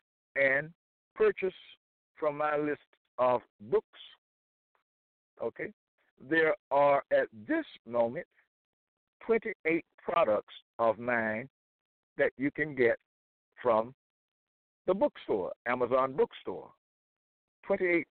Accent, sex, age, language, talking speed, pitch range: American, male, 60-79, English, 90 wpm, 135-170 Hz